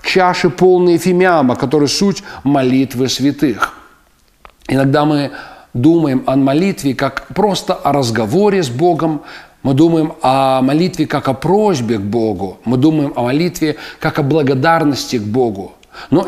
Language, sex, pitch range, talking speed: Russian, male, 140-185 Hz, 135 wpm